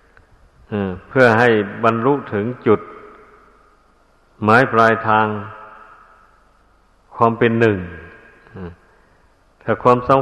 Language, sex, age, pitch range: Thai, male, 60-79, 100-130 Hz